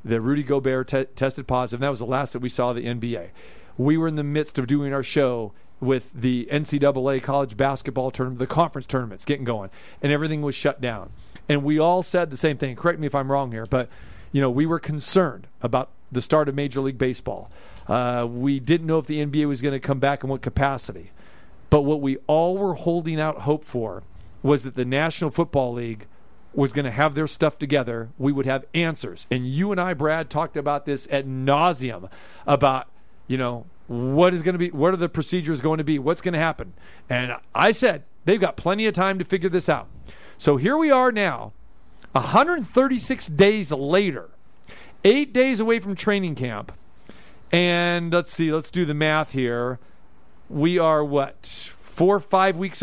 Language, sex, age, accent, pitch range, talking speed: English, male, 40-59, American, 130-170 Hz, 200 wpm